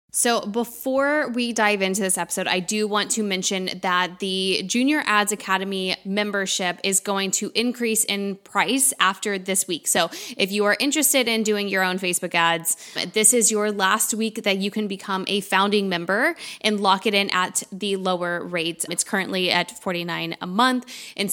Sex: female